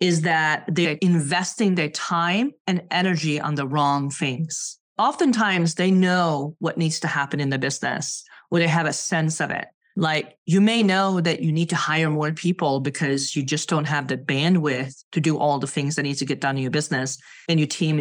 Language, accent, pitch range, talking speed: English, American, 150-175 Hz, 210 wpm